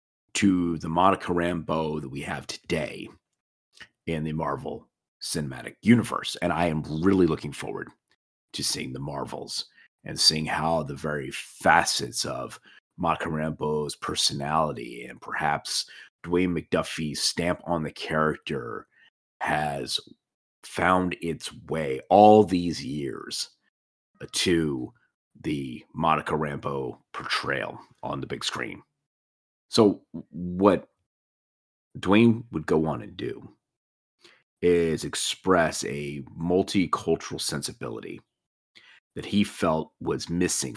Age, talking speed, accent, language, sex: 30-49, 110 wpm, American, English, male